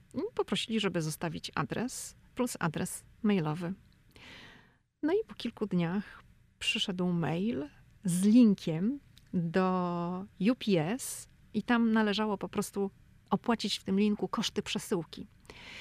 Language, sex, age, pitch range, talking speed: Polish, female, 40-59, 170-220 Hz, 115 wpm